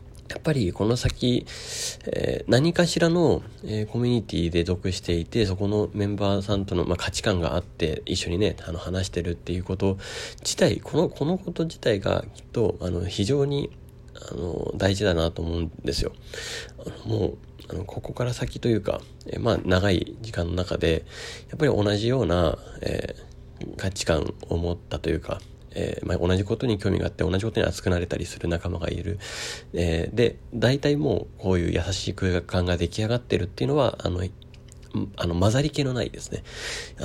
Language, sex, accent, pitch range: Japanese, male, native, 85-115 Hz